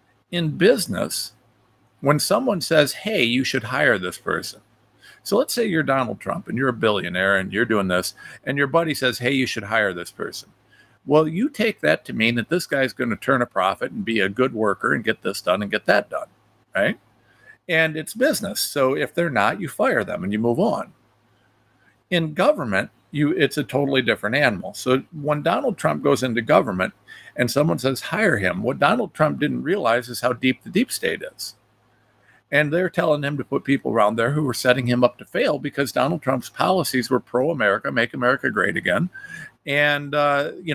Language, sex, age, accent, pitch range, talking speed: English, male, 50-69, American, 120-155 Hz, 205 wpm